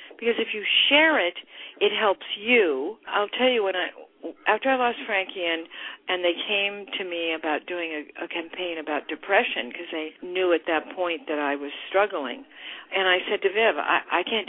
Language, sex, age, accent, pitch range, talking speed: English, female, 60-79, American, 170-220 Hz, 200 wpm